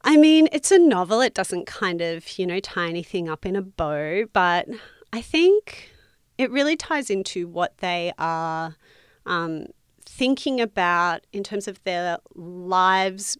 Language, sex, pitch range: English, female, 165-200 Hz